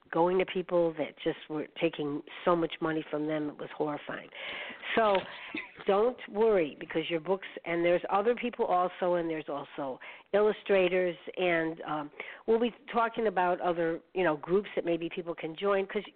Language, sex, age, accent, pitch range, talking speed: English, female, 50-69, American, 165-205 Hz, 170 wpm